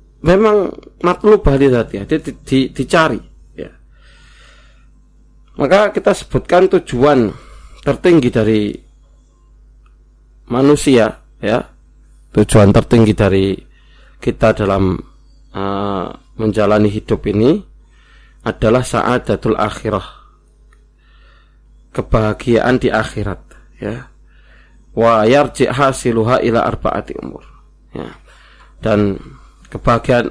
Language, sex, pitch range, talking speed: Indonesian, male, 95-130 Hz, 80 wpm